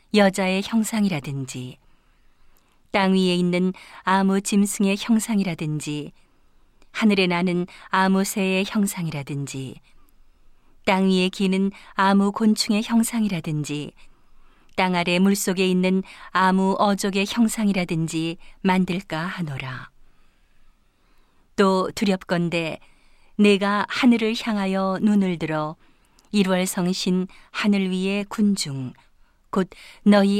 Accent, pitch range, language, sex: native, 170-205 Hz, Korean, female